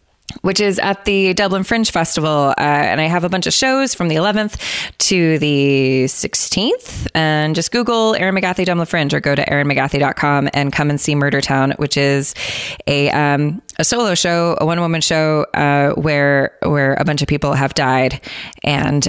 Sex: female